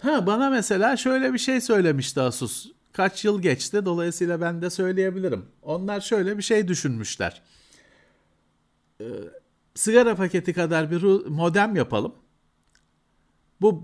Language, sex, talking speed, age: Turkish, male, 120 wpm, 50-69